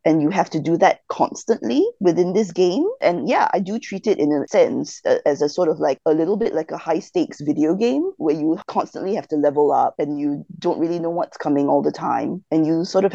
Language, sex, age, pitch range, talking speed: English, female, 20-39, 155-225 Hz, 245 wpm